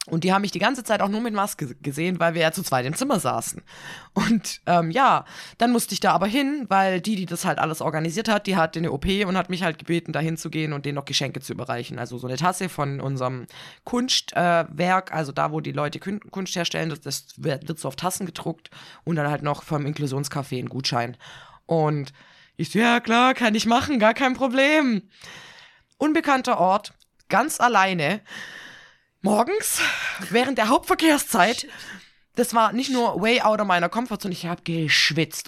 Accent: German